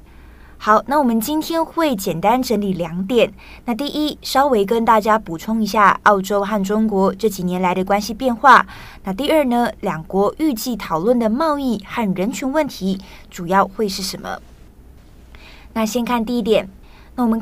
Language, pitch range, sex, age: Chinese, 195-240 Hz, female, 20-39